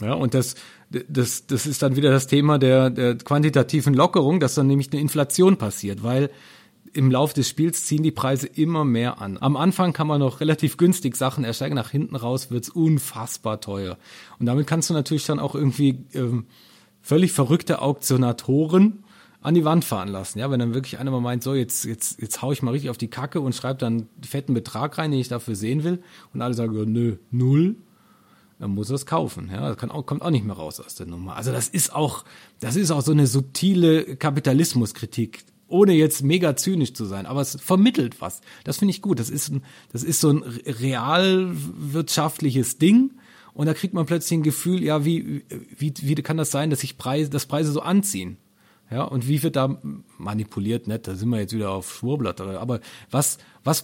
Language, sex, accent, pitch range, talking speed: German, male, German, 120-155 Hz, 205 wpm